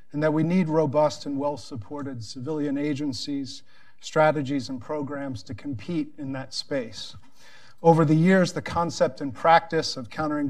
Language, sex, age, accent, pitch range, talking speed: English, male, 40-59, American, 140-165 Hz, 150 wpm